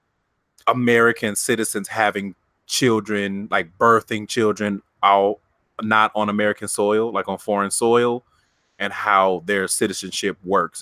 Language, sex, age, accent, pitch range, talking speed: English, male, 30-49, American, 100-130 Hz, 115 wpm